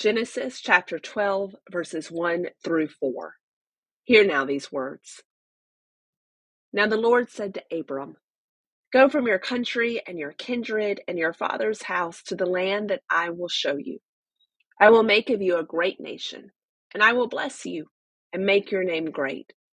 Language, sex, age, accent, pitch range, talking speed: English, female, 30-49, American, 170-230 Hz, 165 wpm